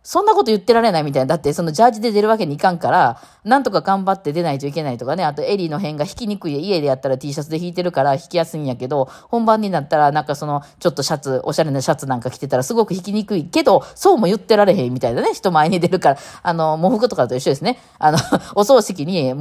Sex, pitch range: female, 140-200 Hz